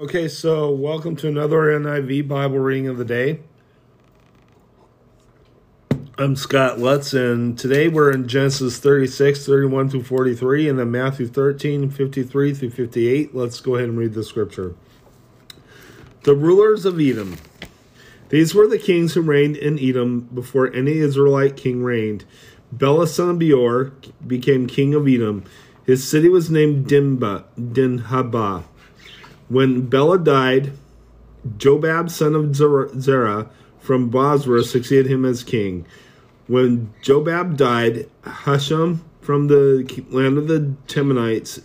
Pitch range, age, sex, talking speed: 125-145 Hz, 40-59, male, 120 wpm